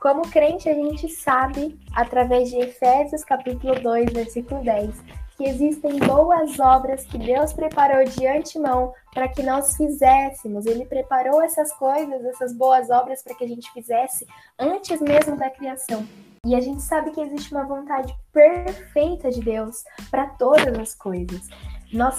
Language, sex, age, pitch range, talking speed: Portuguese, female, 10-29, 250-295 Hz, 155 wpm